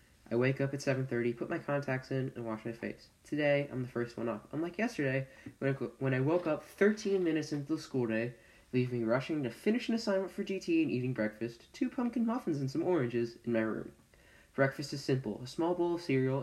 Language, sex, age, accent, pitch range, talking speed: English, male, 10-29, American, 120-170 Hz, 230 wpm